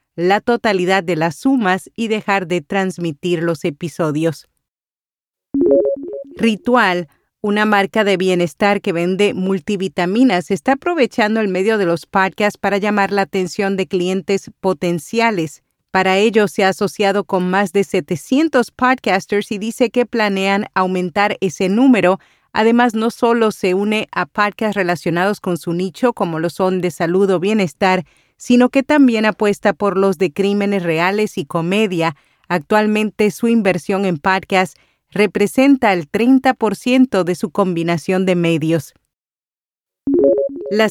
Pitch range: 180-215 Hz